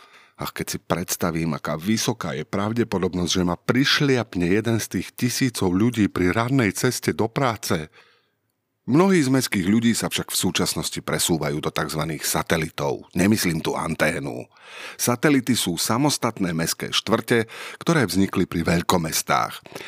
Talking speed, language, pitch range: 140 wpm, Slovak, 85-120 Hz